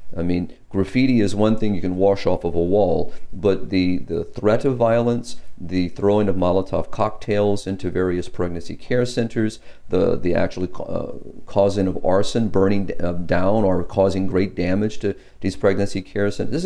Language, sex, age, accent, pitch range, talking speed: English, male, 40-59, American, 90-110 Hz, 175 wpm